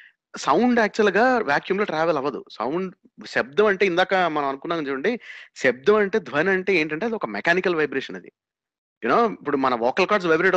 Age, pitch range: 30-49, 160-220 Hz